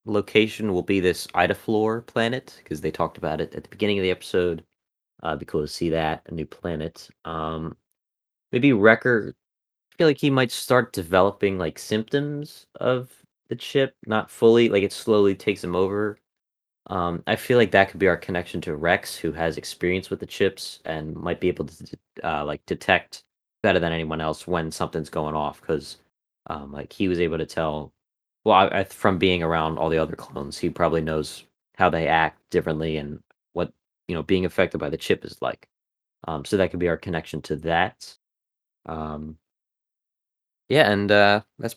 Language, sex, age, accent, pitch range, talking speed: English, male, 30-49, American, 80-105 Hz, 190 wpm